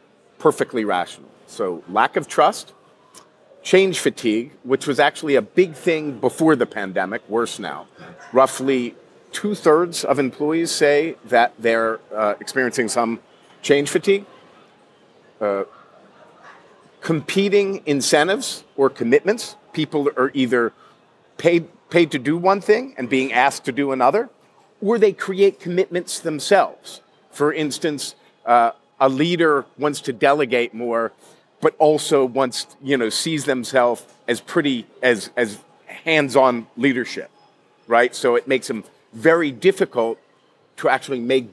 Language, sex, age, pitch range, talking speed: English, male, 50-69, 125-175 Hz, 130 wpm